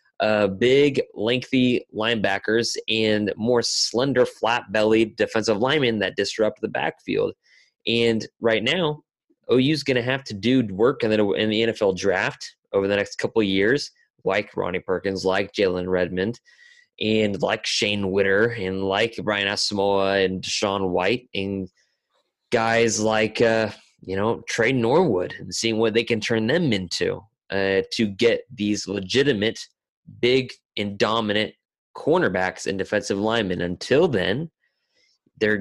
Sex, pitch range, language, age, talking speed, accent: male, 100-125 Hz, English, 20-39, 135 wpm, American